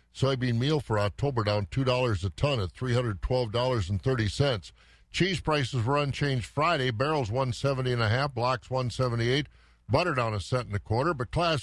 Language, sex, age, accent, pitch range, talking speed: English, male, 50-69, American, 110-145 Hz, 210 wpm